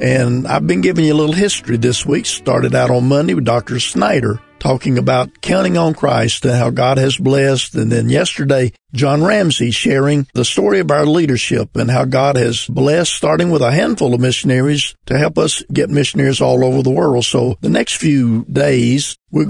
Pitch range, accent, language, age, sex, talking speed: 125-155 Hz, American, English, 50-69, male, 195 wpm